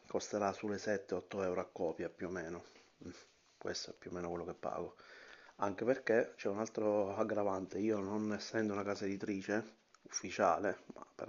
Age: 30-49